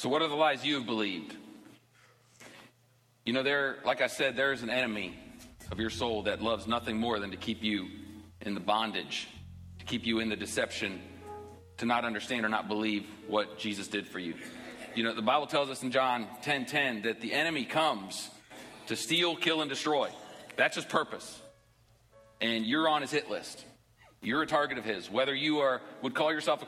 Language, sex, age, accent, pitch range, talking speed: English, male, 40-59, American, 110-145 Hz, 200 wpm